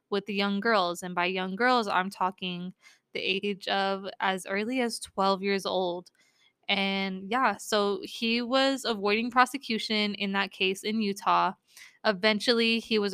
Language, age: English, 20-39